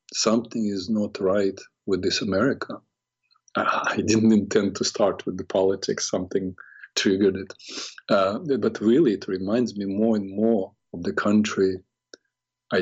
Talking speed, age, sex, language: 150 wpm, 50-69, male, English